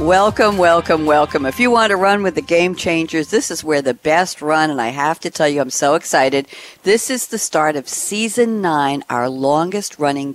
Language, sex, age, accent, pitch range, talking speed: English, female, 60-79, American, 135-195 Hz, 210 wpm